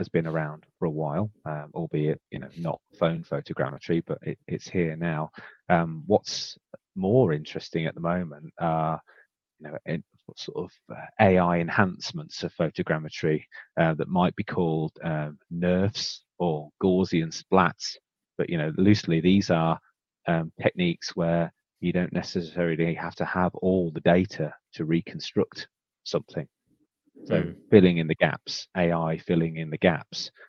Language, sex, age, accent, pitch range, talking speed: English, male, 30-49, British, 80-95 Hz, 150 wpm